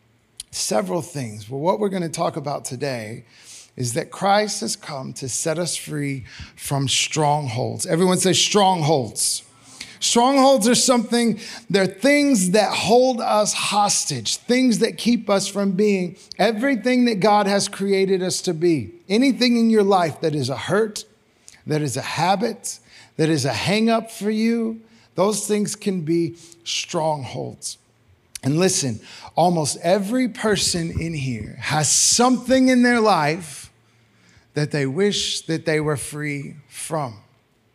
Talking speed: 145 wpm